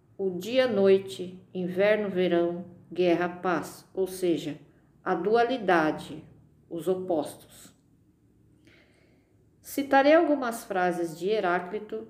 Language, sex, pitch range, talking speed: Portuguese, female, 170-220 Hz, 75 wpm